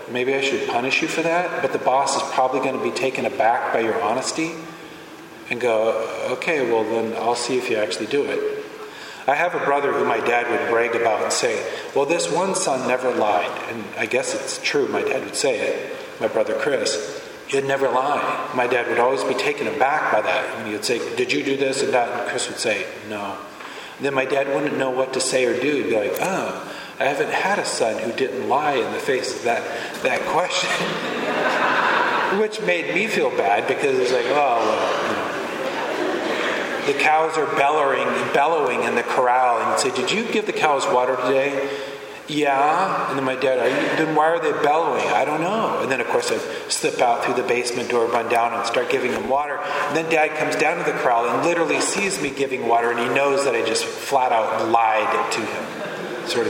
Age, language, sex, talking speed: 40-59, English, male, 220 wpm